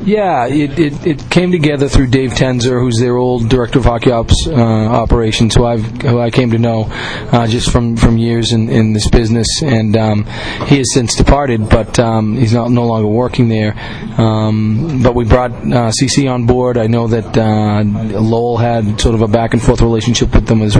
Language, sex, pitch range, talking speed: English, male, 115-130 Hz, 200 wpm